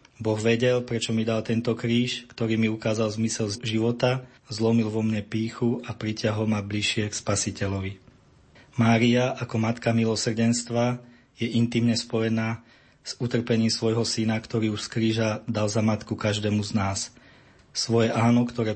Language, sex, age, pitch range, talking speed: Slovak, male, 20-39, 110-115 Hz, 145 wpm